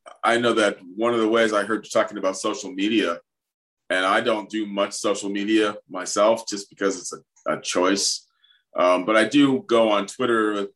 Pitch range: 100-120 Hz